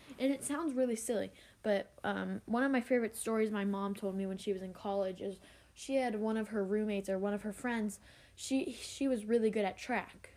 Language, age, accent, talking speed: English, 10-29, American, 230 wpm